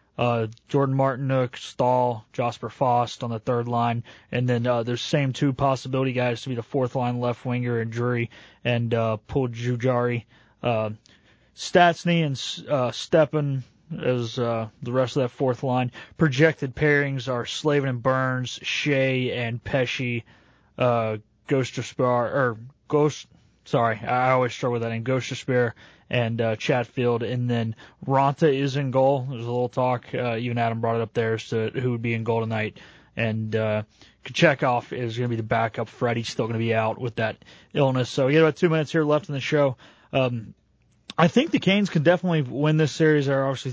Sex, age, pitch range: male, 20-39, 120-140 Hz